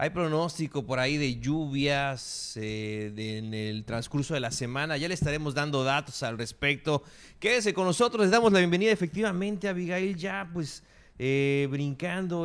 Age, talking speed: 30-49, 170 wpm